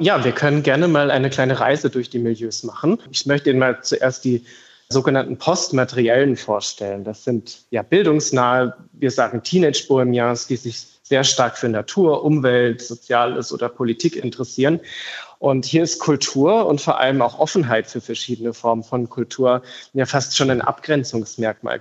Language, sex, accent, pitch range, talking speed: German, male, German, 120-145 Hz, 160 wpm